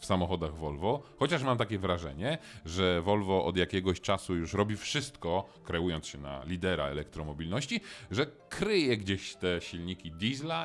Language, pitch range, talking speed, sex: Polish, 85-125 Hz, 145 wpm, male